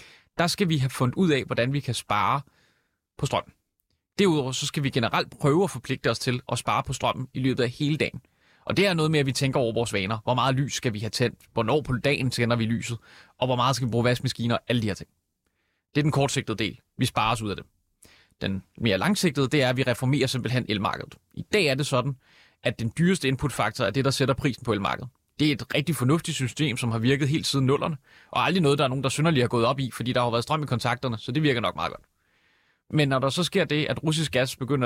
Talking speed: 260 wpm